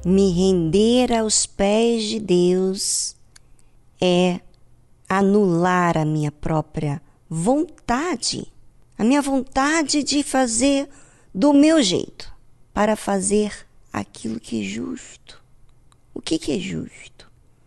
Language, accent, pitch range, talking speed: Portuguese, Brazilian, 165-210 Hz, 100 wpm